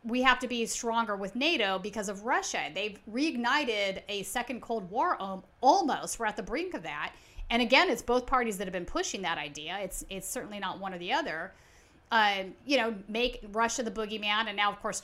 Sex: female